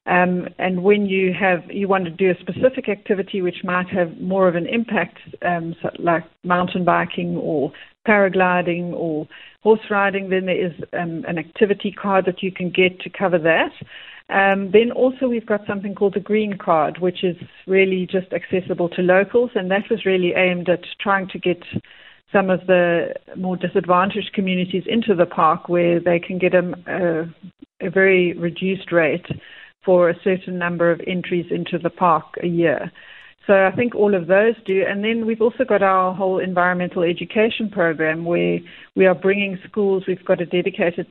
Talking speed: 180 wpm